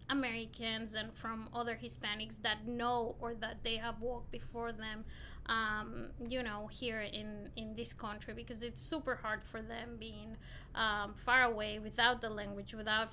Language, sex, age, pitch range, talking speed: English, female, 20-39, 215-240 Hz, 165 wpm